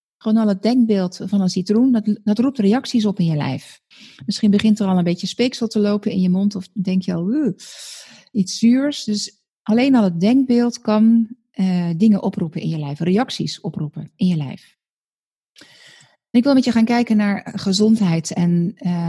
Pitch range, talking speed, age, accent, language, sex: 180-225 Hz, 185 wpm, 40-59, Dutch, Dutch, female